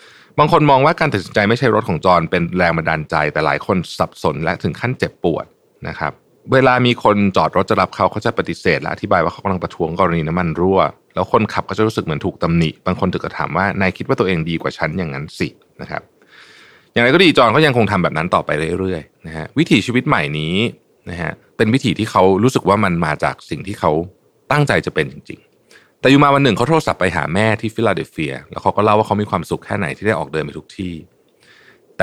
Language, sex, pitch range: Thai, male, 85-115 Hz